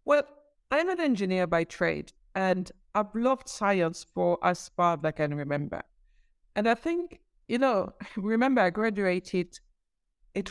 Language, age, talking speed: English, 60-79, 150 wpm